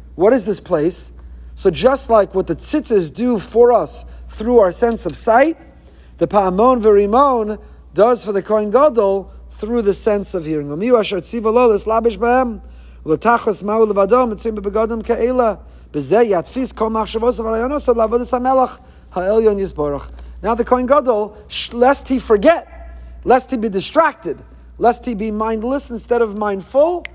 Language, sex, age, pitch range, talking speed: English, male, 40-59, 175-230 Hz, 105 wpm